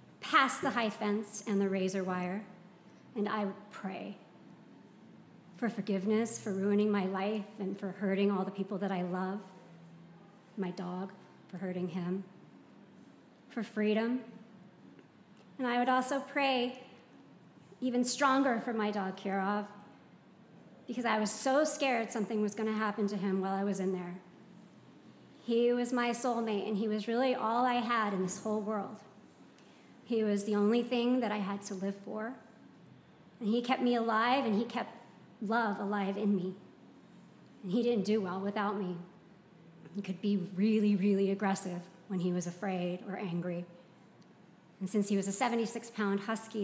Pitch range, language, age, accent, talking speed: 195-225 Hz, English, 40-59, American, 160 wpm